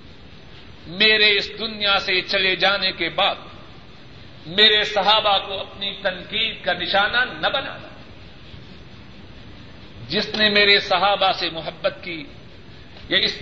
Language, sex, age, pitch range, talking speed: Urdu, male, 50-69, 180-245 Hz, 115 wpm